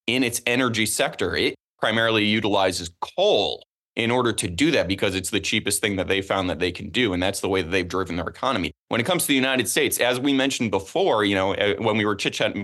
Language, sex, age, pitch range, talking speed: English, male, 20-39, 100-130 Hz, 240 wpm